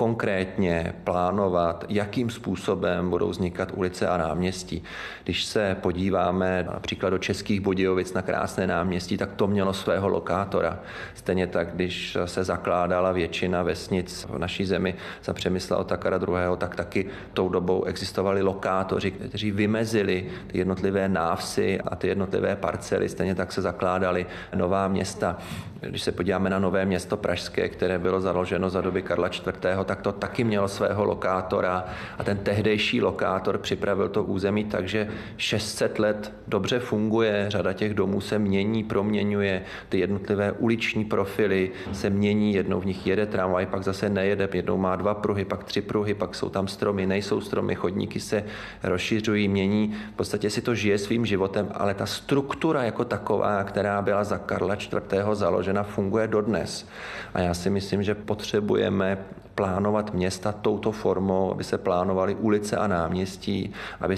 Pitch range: 95-105 Hz